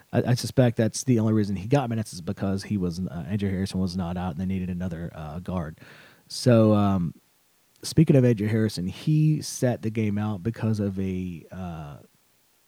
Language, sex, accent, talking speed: English, male, American, 190 wpm